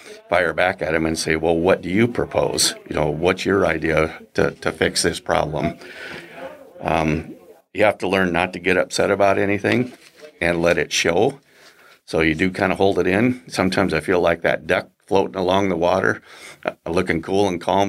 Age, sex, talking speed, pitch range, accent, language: 50-69, male, 195 wpm, 80-95 Hz, American, English